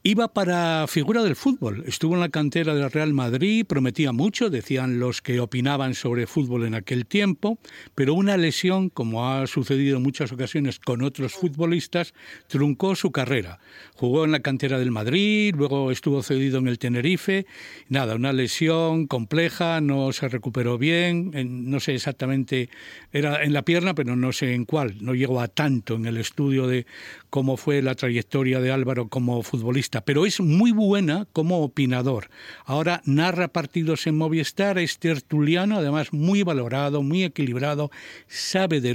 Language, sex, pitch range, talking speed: Spanish, male, 130-170 Hz, 165 wpm